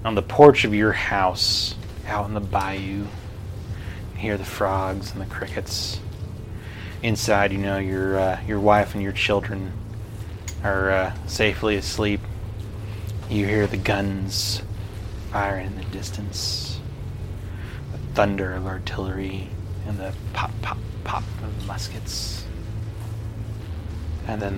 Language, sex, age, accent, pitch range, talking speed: English, male, 30-49, American, 95-105 Hz, 125 wpm